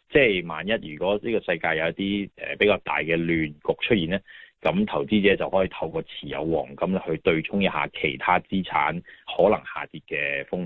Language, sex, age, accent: Chinese, male, 30-49, native